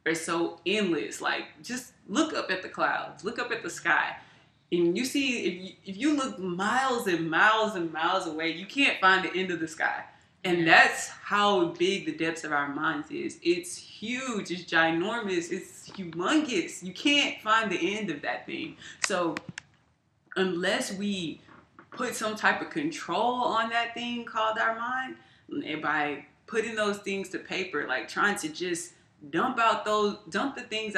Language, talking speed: English, 175 wpm